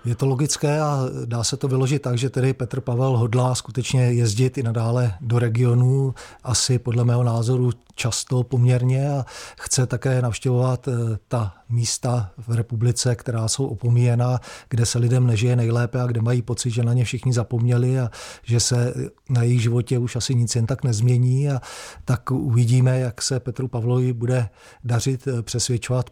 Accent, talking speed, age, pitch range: native, 165 wpm, 40-59, 115-125 Hz